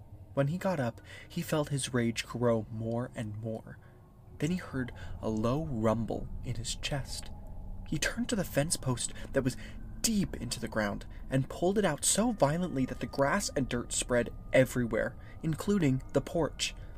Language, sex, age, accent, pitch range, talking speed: English, male, 20-39, American, 115-165 Hz, 175 wpm